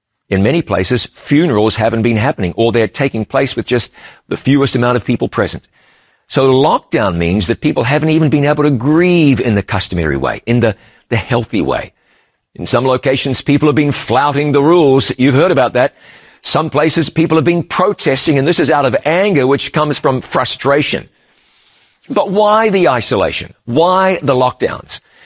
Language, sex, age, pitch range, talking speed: English, male, 50-69, 130-175 Hz, 180 wpm